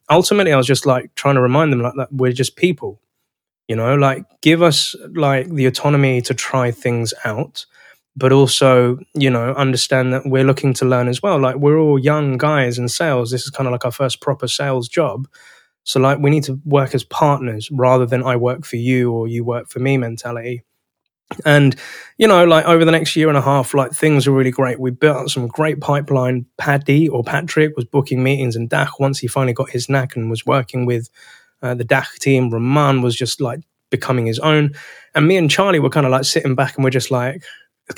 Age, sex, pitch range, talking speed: 20-39, male, 125-150 Hz, 225 wpm